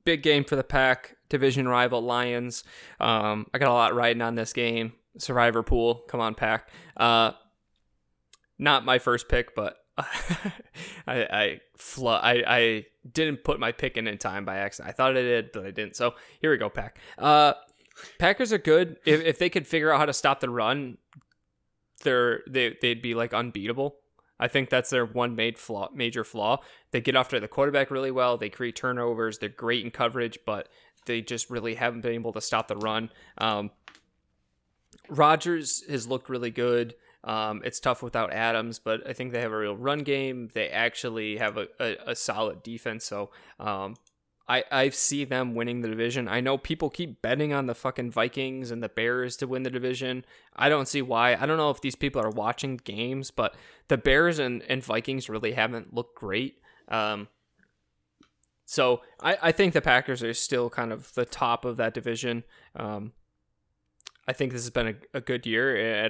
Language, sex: English, male